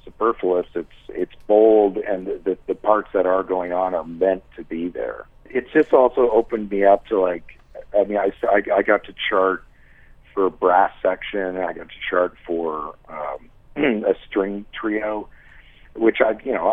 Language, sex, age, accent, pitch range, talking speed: English, male, 50-69, American, 85-100 Hz, 180 wpm